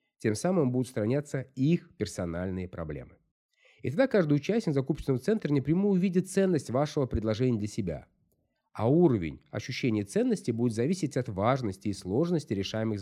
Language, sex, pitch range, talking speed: Russian, male, 110-165 Hz, 145 wpm